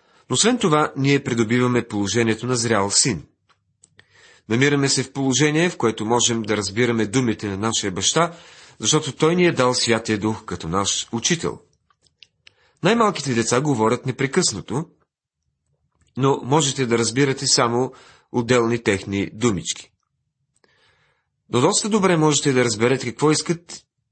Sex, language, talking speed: male, Bulgarian, 130 wpm